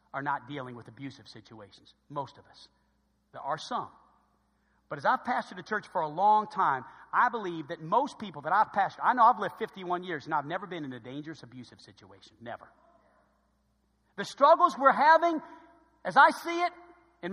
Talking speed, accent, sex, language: 190 wpm, American, male, English